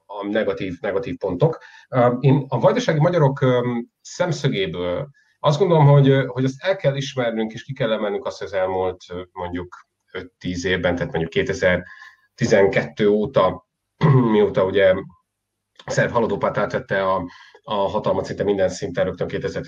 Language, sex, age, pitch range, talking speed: Hungarian, male, 30-49, 90-135 Hz, 135 wpm